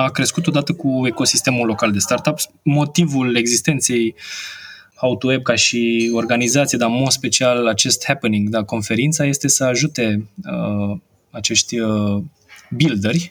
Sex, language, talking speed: male, Romanian, 130 wpm